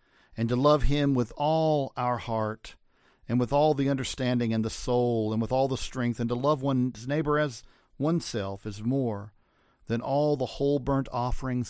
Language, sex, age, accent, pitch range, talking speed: English, male, 50-69, American, 110-135 Hz, 185 wpm